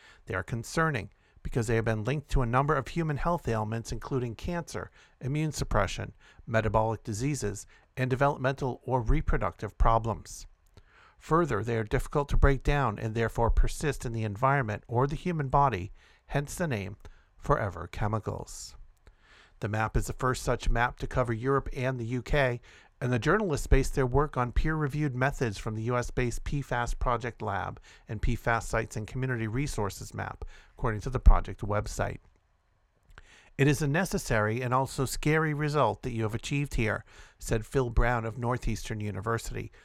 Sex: male